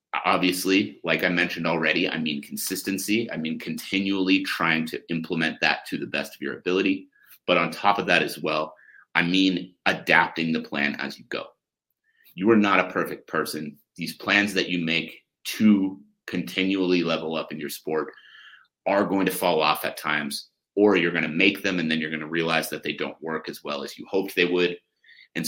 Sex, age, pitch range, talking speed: male, 30-49, 80-95 Hz, 200 wpm